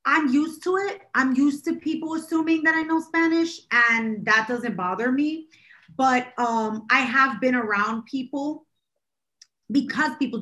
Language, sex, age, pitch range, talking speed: English, female, 30-49, 215-270 Hz, 155 wpm